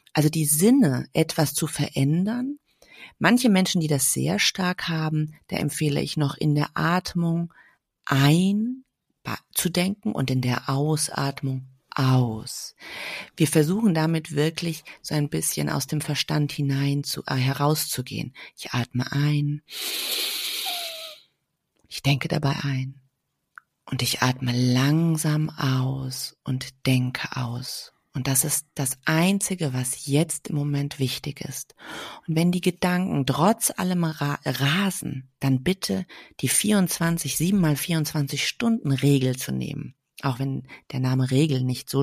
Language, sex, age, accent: German, female, 30-49, German